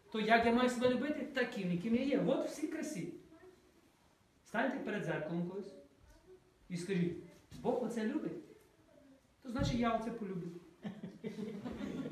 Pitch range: 180-260 Hz